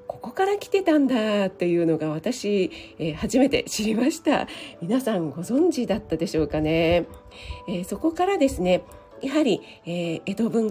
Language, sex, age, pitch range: Japanese, female, 40-59, 170-230 Hz